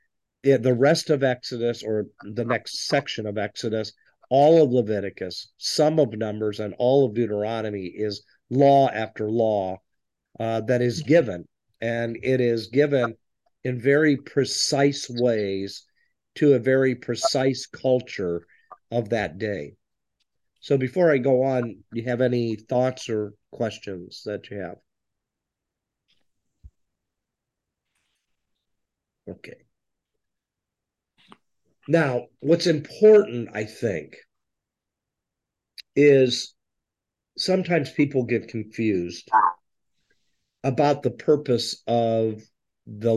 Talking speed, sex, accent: 105 wpm, male, American